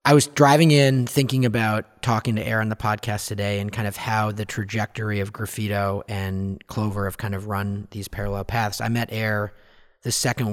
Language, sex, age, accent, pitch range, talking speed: English, male, 30-49, American, 105-125 Hz, 200 wpm